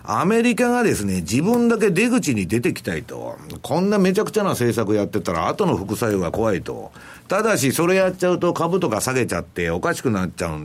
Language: Japanese